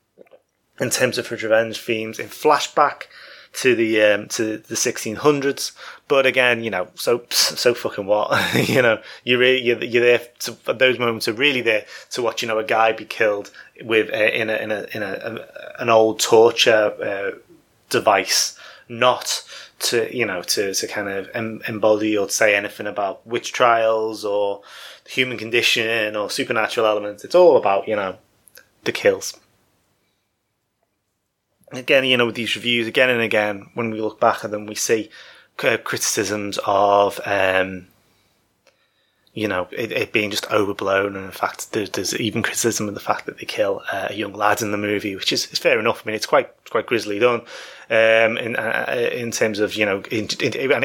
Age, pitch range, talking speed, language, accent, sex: 20-39, 105-125 Hz, 185 wpm, English, British, male